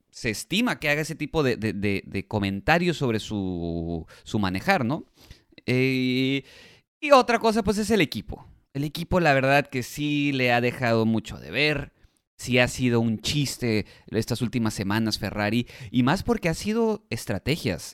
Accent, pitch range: Mexican, 105-140 Hz